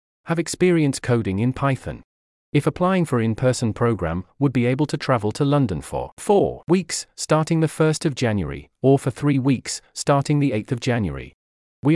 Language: English